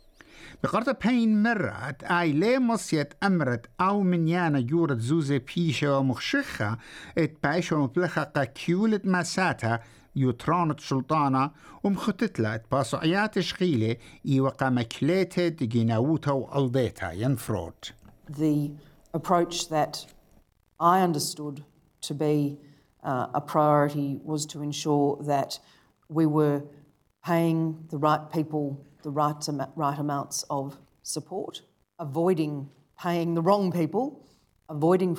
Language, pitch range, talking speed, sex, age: English, 140-165 Hz, 70 wpm, male, 60-79